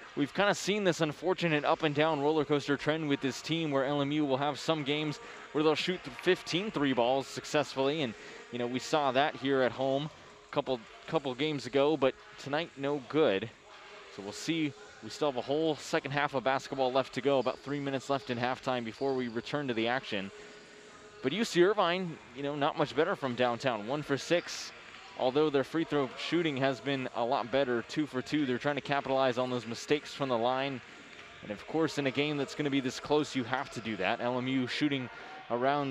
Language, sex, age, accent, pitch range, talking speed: English, male, 20-39, American, 130-155 Hz, 215 wpm